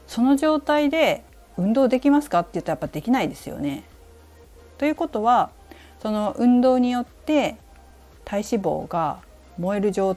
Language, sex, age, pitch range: Japanese, female, 40-59, 145-245 Hz